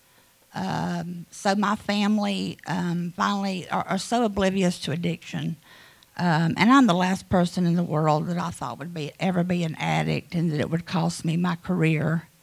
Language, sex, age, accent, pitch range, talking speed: English, female, 50-69, American, 160-185 Hz, 185 wpm